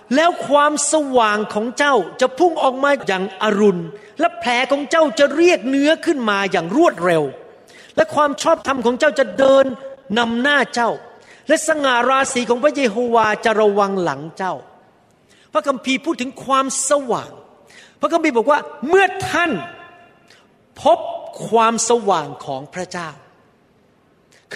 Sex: male